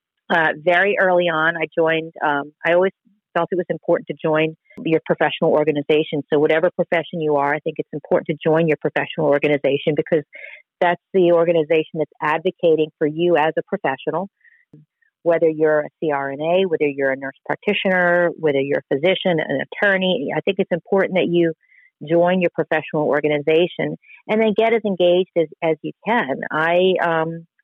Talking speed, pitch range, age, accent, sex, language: 170 wpm, 155-175 Hz, 40-59, American, female, English